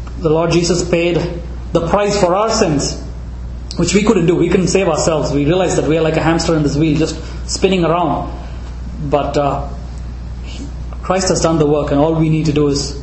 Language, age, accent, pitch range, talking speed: English, 20-39, Indian, 140-170 Hz, 205 wpm